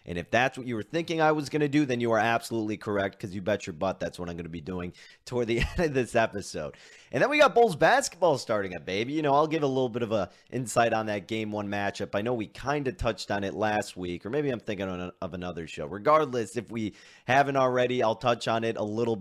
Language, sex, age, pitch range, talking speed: English, male, 30-49, 100-130 Hz, 270 wpm